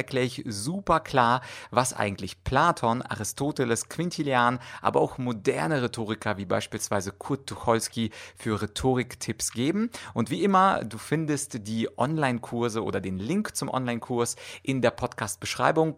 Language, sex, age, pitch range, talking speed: German, male, 30-49, 105-140 Hz, 130 wpm